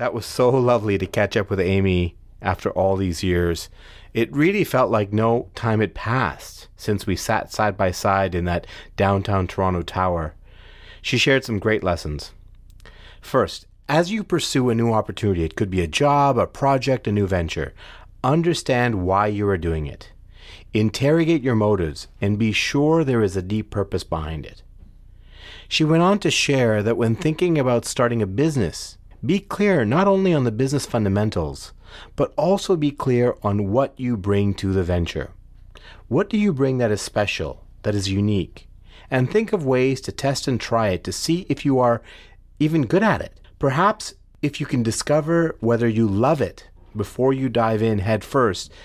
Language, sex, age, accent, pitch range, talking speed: English, male, 30-49, American, 95-130 Hz, 180 wpm